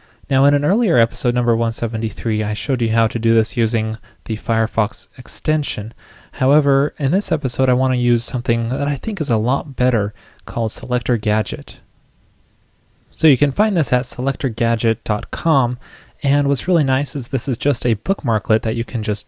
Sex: male